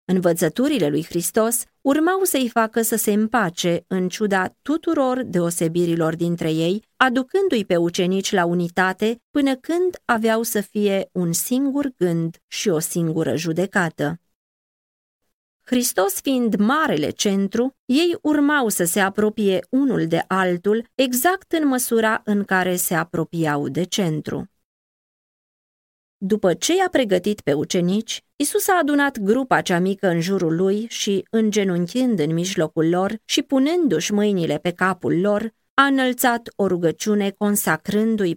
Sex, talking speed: female, 130 wpm